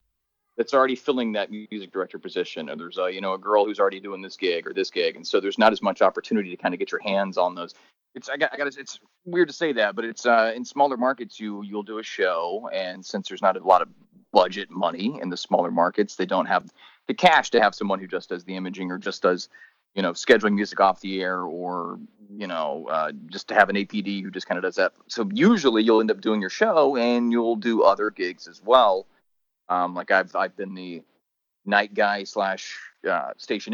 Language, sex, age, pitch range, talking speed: English, male, 30-49, 95-120 Hz, 240 wpm